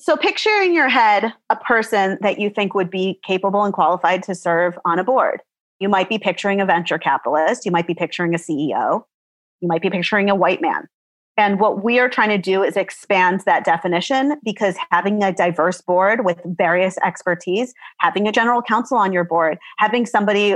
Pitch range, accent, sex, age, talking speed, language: 180-220 Hz, American, female, 30-49, 200 wpm, English